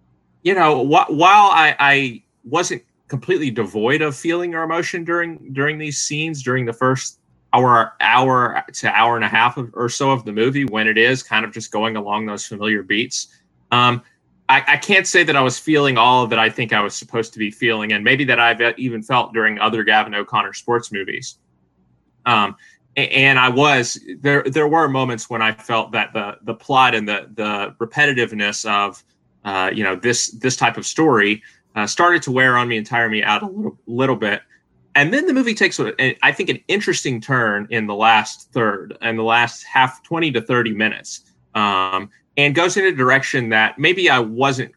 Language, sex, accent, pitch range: English, male, American, 105-135 Hz